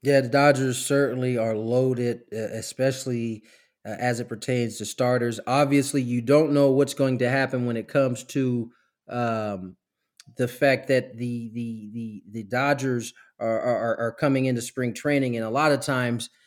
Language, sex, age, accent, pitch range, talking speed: English, male, 30-49, American, 120-150 Hz, 165 wpm